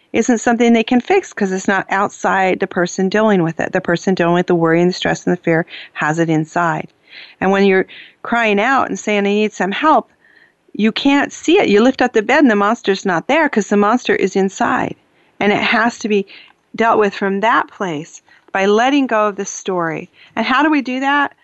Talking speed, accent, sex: 225 wpm, American, female